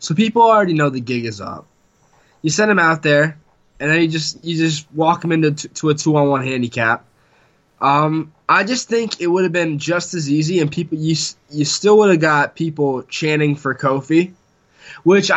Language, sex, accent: English, male, American